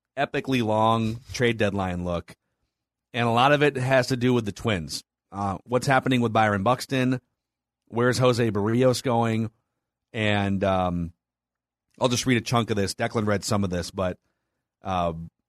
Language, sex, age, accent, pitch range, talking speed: English, male, 30-49, American, 100-130 Hz, 165 wpm